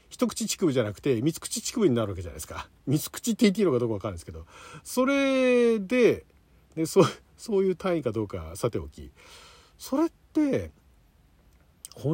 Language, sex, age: Japanese, male, 50-69